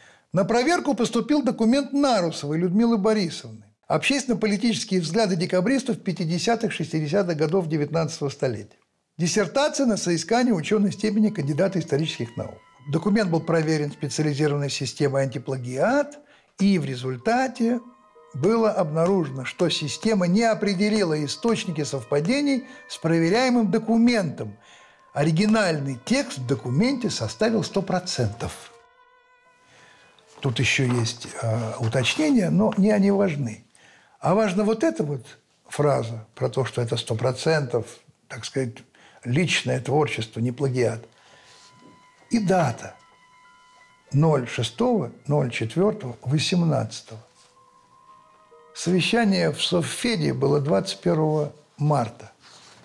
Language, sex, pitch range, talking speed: Russian, male, 135-220 Hz, 95 wpm